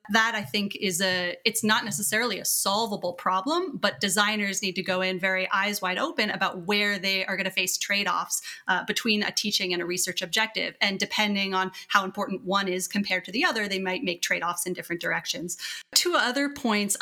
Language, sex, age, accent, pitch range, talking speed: English, female, 30-49, American, 195-250 Hz, 205 wpm